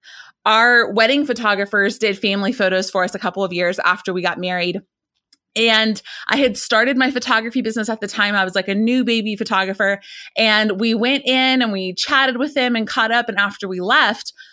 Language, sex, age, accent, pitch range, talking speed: English, female, 20-39, American, 195-250 Hz, 200 wpm